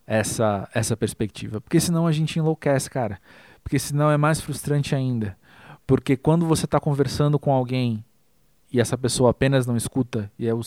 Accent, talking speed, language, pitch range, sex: Brazilian, 175 wpm, Portuguese, 120-150 Hz, male